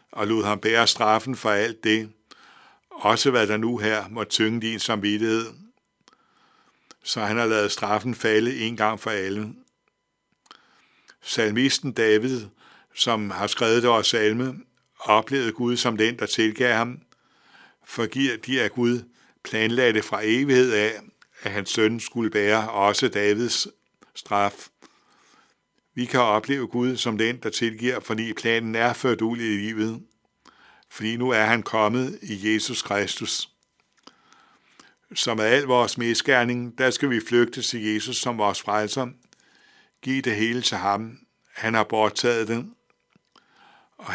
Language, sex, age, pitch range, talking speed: Danish, male, 60-79, 110-120 Hz, 145 wpm